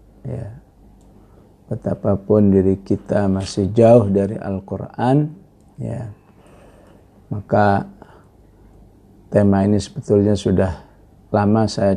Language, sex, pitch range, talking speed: English, male, 95-110 Hz, 80 wpm